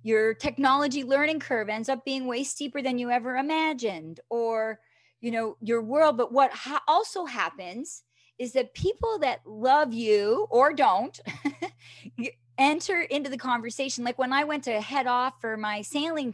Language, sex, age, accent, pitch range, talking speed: English, female, 30-49, American, 220-290 Hz, 160 wpm